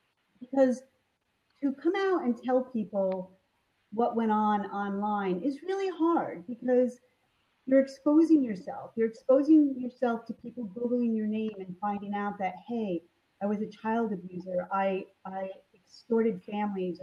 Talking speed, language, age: 140 wpm, English, 40-59